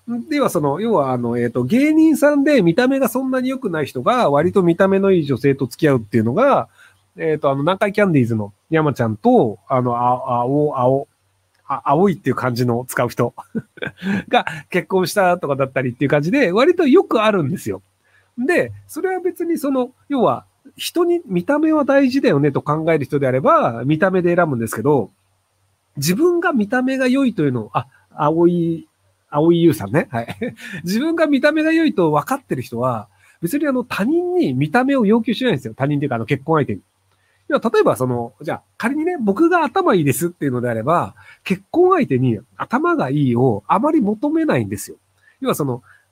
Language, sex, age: Japanese, male, 40-59